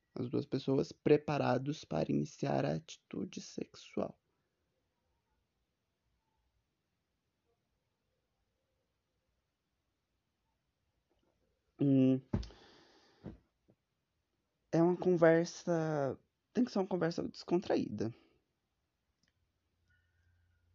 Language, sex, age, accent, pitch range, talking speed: Portuguese, male, 20-39, Brazilian, 115-145 Hz, 55 wpm